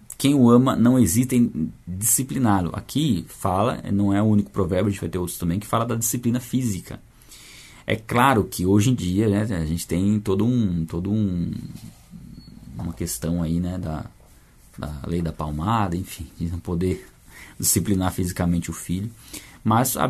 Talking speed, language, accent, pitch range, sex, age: 175 wpm, Portuguese, Brazilian, 90-120 Hz, male, 20-39